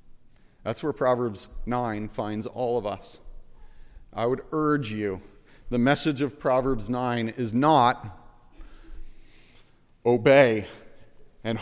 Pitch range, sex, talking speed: 115-160 Hz, male, 110 wpm